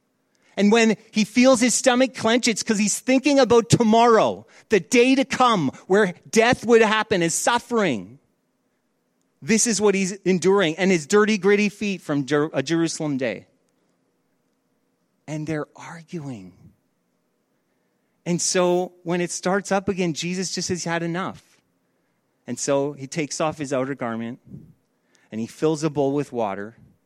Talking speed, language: 150 wpm, English